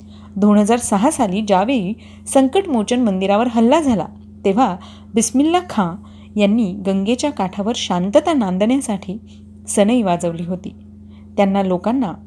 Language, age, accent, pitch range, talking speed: Marathi, 30-49, native, 170-235 Hz, 105 wpm